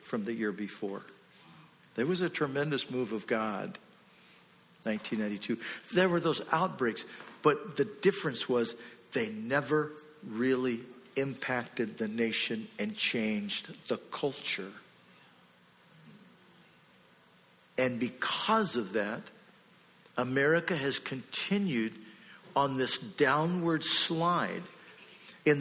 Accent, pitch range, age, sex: American, 125-160 Hz, 50-69, male